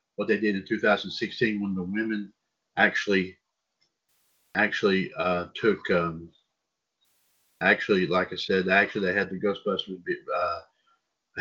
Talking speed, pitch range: 120 wpm, 95-125 Hz